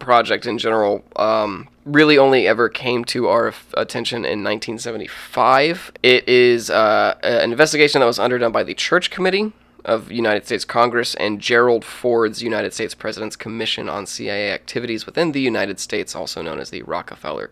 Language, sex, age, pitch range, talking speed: English, male, 20-39, 110-125 Hz, 170 wpm